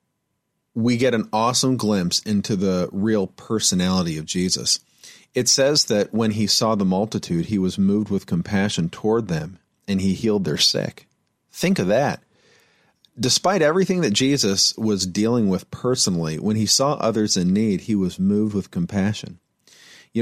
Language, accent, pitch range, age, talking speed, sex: English, American, 95-115 Hz, 40-59, 160 wpm, male